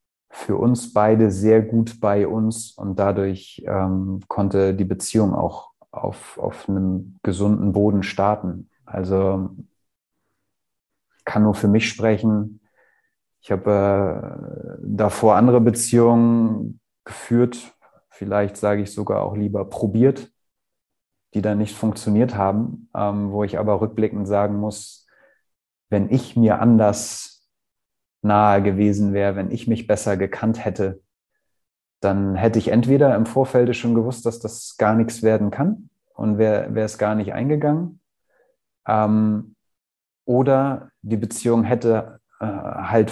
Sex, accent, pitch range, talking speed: male, German, 100-115 Hz, 130 wpm